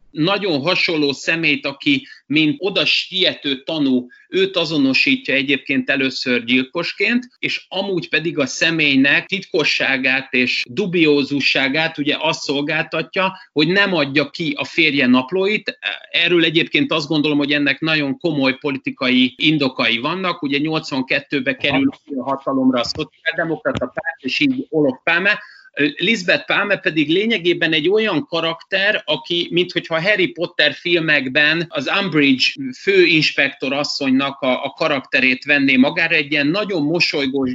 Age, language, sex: 30-49, Hungarian, male